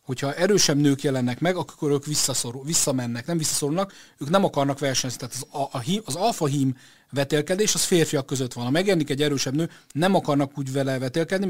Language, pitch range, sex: Hungarian, 130-155 Hz, male